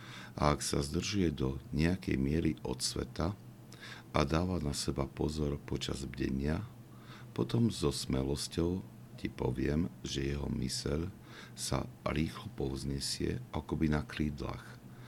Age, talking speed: 60-79, 120 wpm